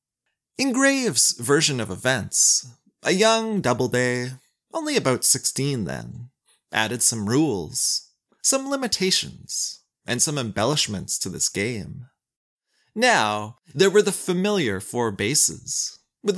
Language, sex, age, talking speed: English, male, 30-49, 115 wpm